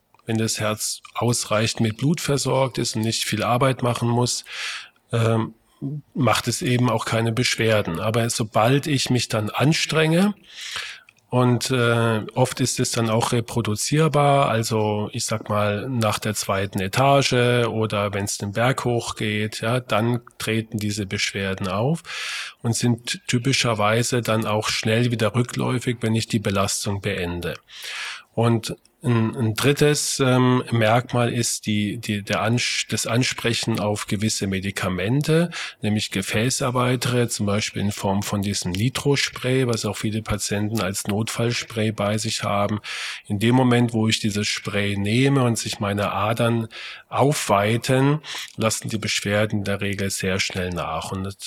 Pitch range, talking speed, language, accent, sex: 105-125 Hz, 145 wpm, German, German, male